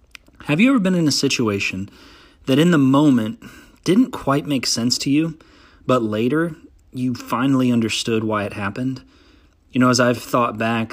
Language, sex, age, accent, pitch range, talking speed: English, male, 30-49, American, 110-135 Hz, 170 wpm